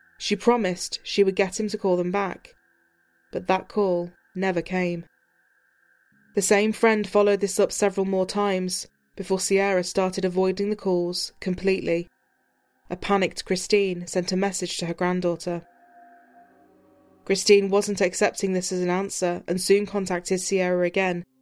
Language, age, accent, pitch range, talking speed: English, 20-39, British, 180-205 Hz, 145 wpm